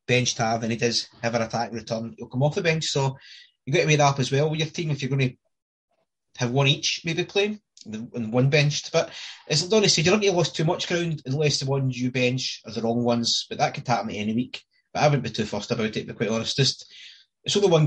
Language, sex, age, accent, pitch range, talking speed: English, male, 20-39, British, 125-165 Hz, 270 wpm